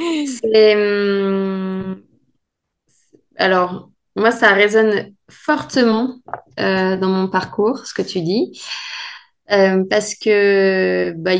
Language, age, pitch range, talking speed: French, 20-39, 190-235 Hz, 105 wpm